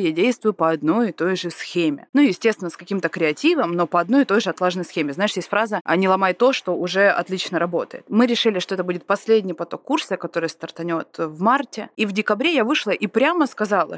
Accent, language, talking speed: native, Russian, 225 wpm